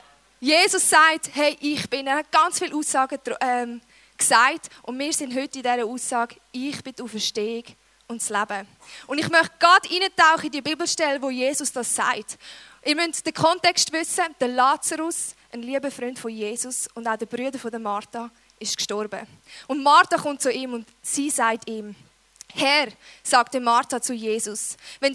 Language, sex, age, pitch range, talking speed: German, female, 10-29, 225-275 Hz, 170 wpm